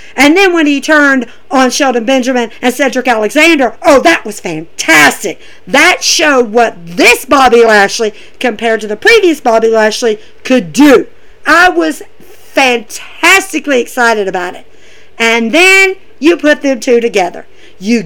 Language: English